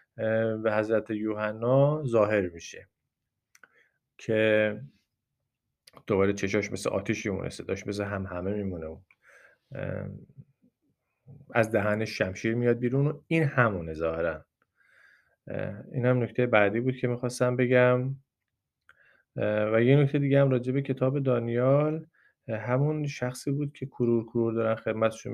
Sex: male